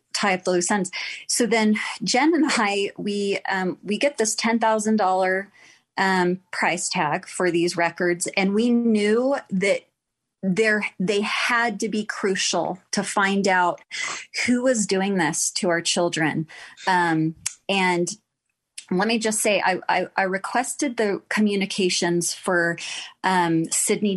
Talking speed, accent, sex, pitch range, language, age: 145 wpm, American, female, 180-220 Hz, English, 30-49